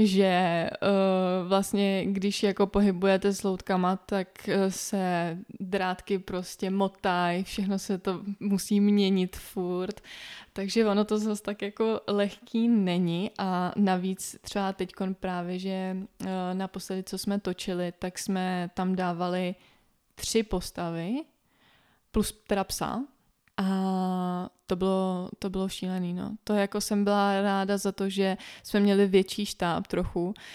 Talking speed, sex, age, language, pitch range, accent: 130 wpm, female, 20-39, Czech, 190-210 Hz, native